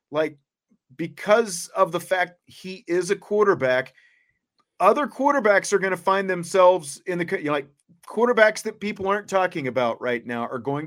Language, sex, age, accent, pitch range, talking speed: English, male, 40-59, American, 125-165 Hz, 170 wpm